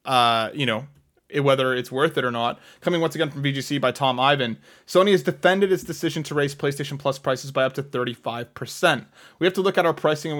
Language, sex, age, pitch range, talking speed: English, male, 20-39, 130-160 Hz, 225 wpm